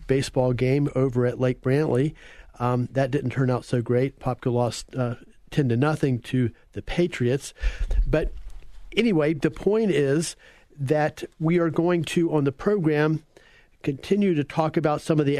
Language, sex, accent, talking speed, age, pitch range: English, male, American, 165 wpm, 50-69, 135-155 Hz